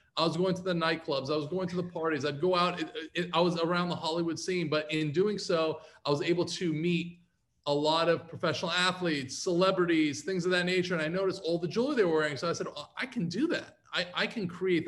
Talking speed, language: 240 wpm, English